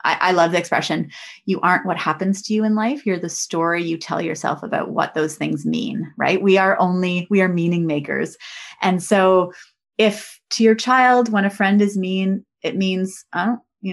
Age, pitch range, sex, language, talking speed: 20-39, 170-210 Hz, female, English, 195 wpm